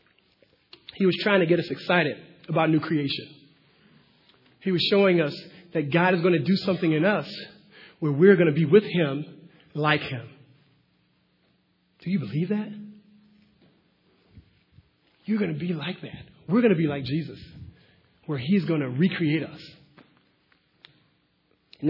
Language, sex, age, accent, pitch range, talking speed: English, male, 40-59, American, 160-220 Hz, 150 wpm